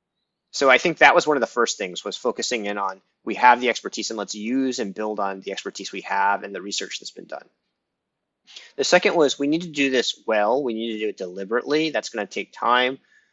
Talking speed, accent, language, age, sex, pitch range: 240 wpm, American, English, 30-49, male, 105-135 Hz